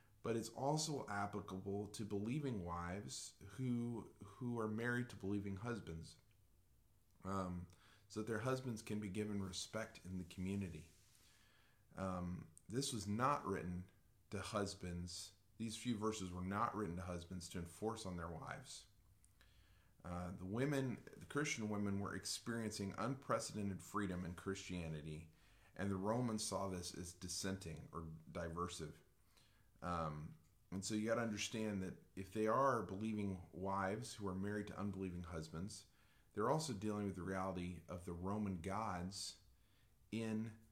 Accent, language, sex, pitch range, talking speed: American, English, male, 90-110 Hz, 145 wpm